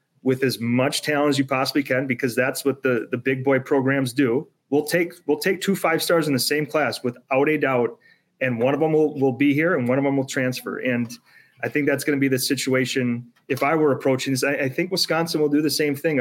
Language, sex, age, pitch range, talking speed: English, male, 30-49, 125-145 Hz, 250 wpm